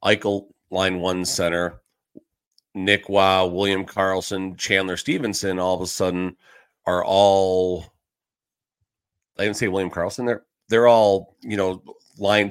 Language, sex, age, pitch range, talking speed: English, male, 40-59, 80-100 Hz, 130 wpm